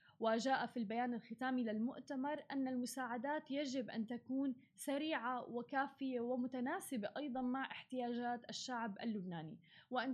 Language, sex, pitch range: Arabic, female, 230-275 Hz